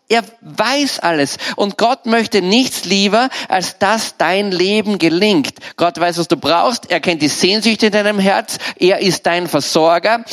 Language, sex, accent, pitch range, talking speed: German, male, German, 165-215 Hz, 170 wpm